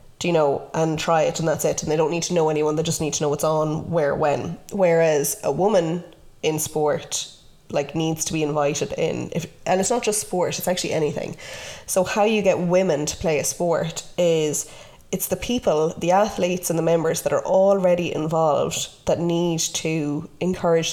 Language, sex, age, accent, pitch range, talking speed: English, female, 20-39, Irish, 155-180 Hz, 205 wpm